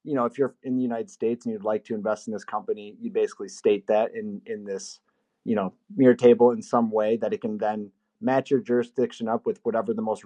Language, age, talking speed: English, 30-49, 245 wpm